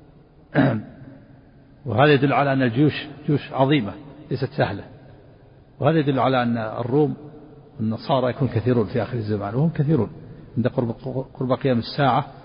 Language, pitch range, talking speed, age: Arabic, 125-150 Hz, 130 wpm, 50-69